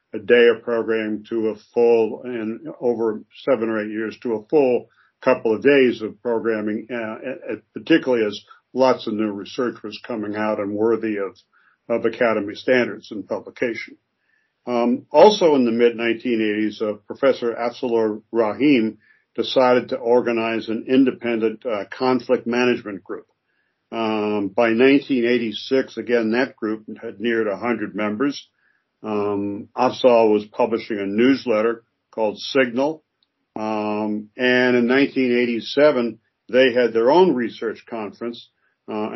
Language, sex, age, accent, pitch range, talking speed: English, male, 60-79, American, 110-120 Hz, 135 wpm